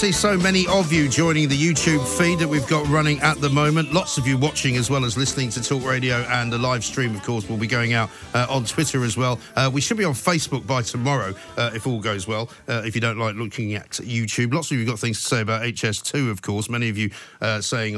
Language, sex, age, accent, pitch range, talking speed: English, male, 50-69, British, 110-140 Hz, 265 wpm